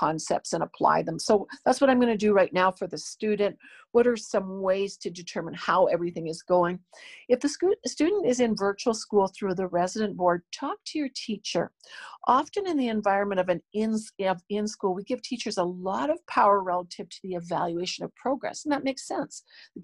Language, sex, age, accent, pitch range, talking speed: English, female, 50-69, American, 185-240 Hz, 205 wpm